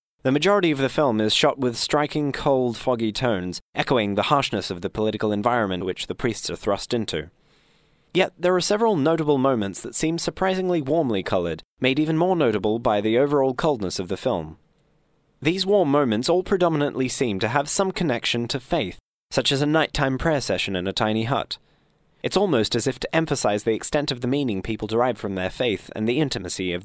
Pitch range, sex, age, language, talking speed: 110-150 Hz, male, 20-39, English, 200 wpm